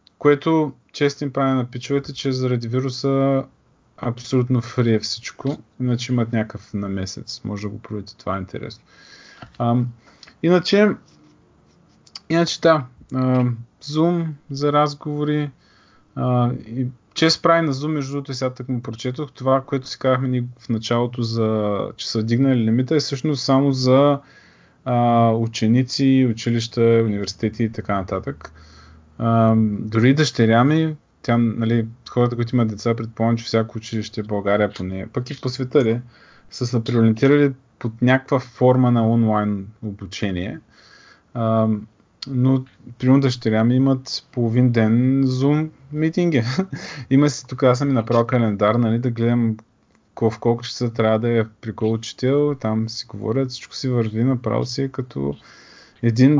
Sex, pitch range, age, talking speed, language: male, 115-135 Hz, 30-49, 145 wpm, Bulgarian